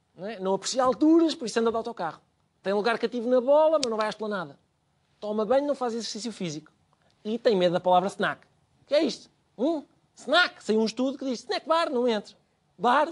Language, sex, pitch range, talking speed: Portuguese, male, 190-265 Hz, 210 wpm